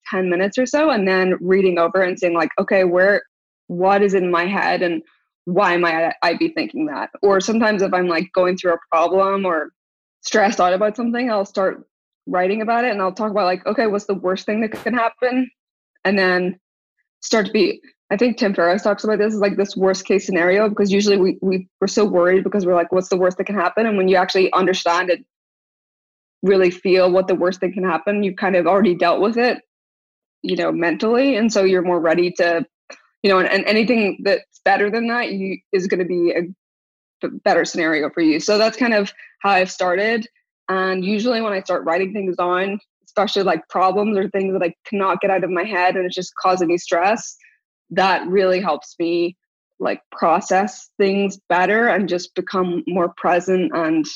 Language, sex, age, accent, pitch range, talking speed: English, female, 20-39, American, 180-210 Hz, 205 wpm